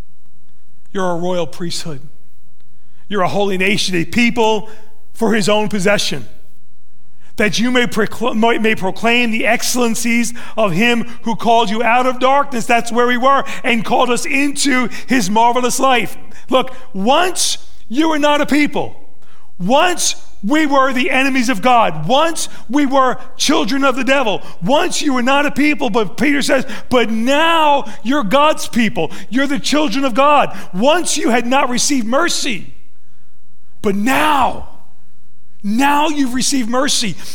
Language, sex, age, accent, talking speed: English, male, 40-59, American, 150 wpm